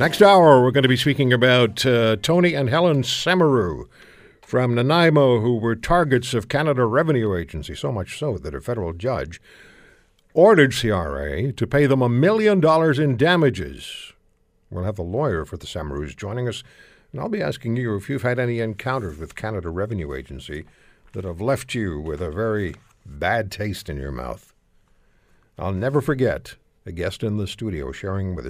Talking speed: 175 wpm